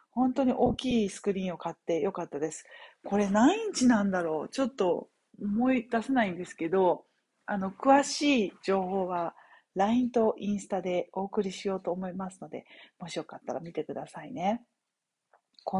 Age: 40-59